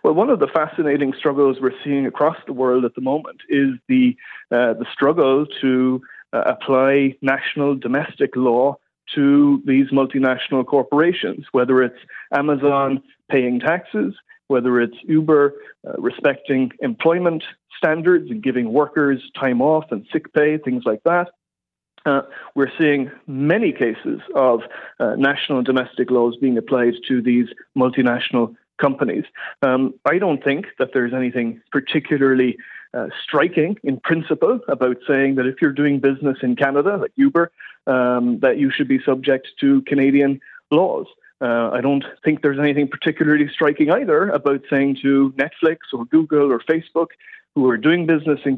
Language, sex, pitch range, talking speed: English, male, 130-155 Hz, 150 wpm